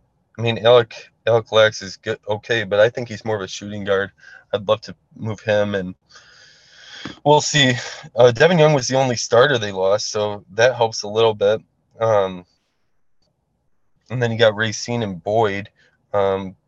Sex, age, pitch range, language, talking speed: male, 20-39, 95-115 Hz, English, 175 wpm